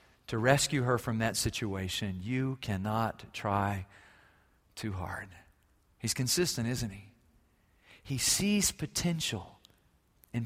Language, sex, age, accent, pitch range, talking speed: English, male, 40-59, American, 115-170 Hz, 110 wpm